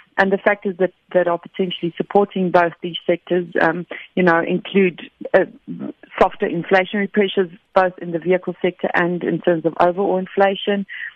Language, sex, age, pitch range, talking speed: English, female, 40-59, 170-195 Hz, 160 wpm